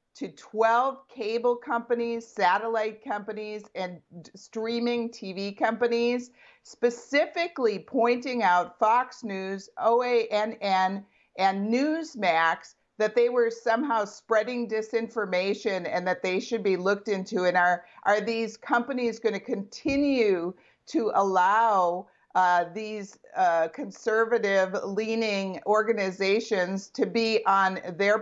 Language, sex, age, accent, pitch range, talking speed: English, female, 50-69, American, 195-245 Hz, 105 wpm